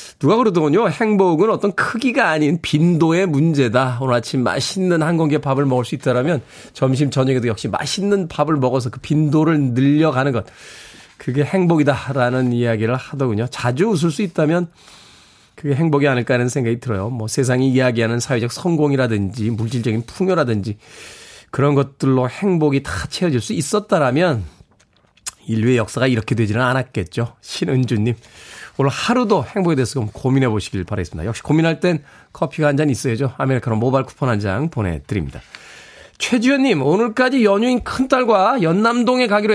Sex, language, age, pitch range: male, Korean, 20-39, 125-180 Hz